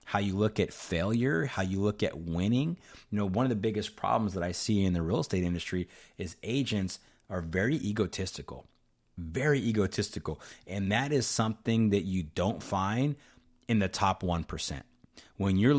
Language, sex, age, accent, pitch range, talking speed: English, male, 30-49, American, 90-115 Hz, 175 wpm